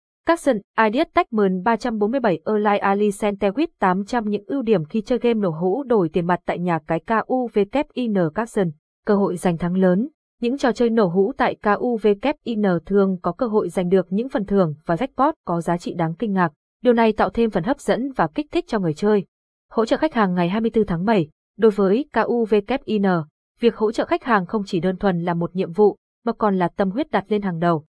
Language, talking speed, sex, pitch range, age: Vietnamese, 215 wpm, female, 185-235 Hz, 20-39